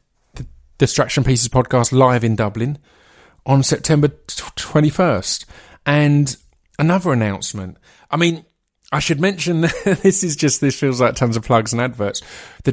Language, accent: English, British